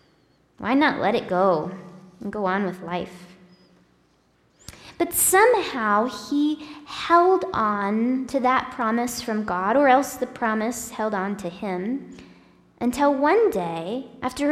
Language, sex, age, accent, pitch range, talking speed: English, female, 10-29, American, 240-325 Hz, 130 wpm